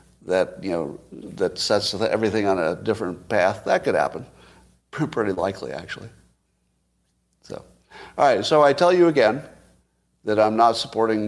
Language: English